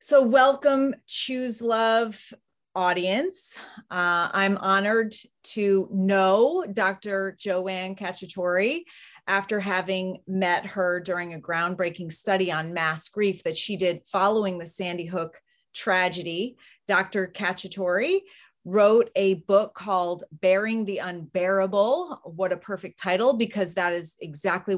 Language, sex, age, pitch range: English, female, 30-49, 180-220 Hz